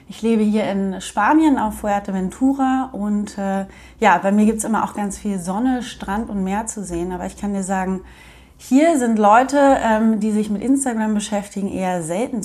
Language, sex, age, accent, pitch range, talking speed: German, female, 30-49, German, 195-235 Hz, 195 wpm